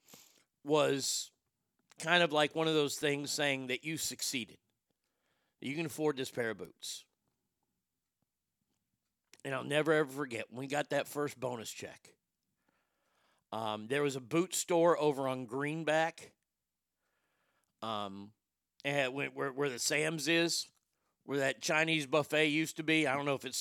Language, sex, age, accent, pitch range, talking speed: English, male, 40-59, American, 120-150 Hz, 150 wpm